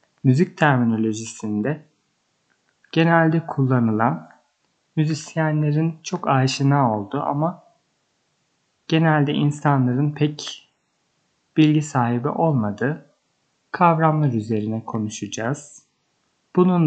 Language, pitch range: Turkish, 120-155 Hz